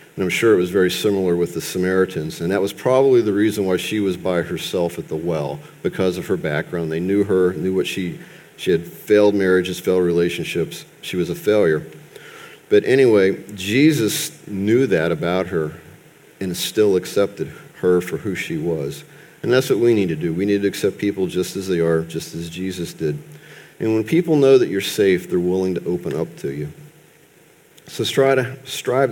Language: English